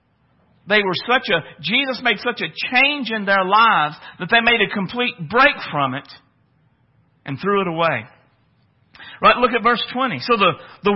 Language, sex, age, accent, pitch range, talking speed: English, male, 50-69, American, 180-265 Hz, 175 wpm